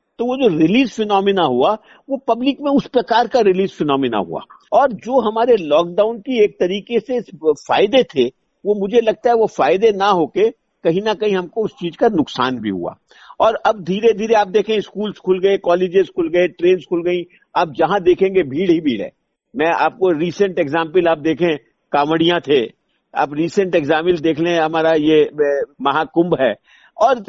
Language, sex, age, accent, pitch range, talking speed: Hindi, male, 50-69, native, 175-230 Hz, 180 wpm